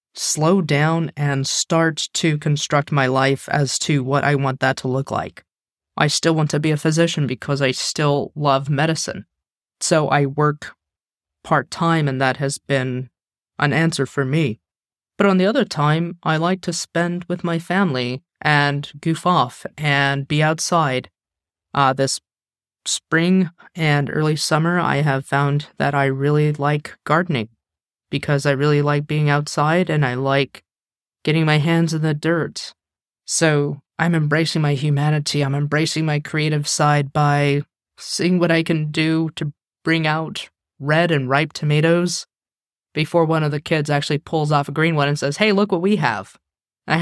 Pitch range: 140-165 Hz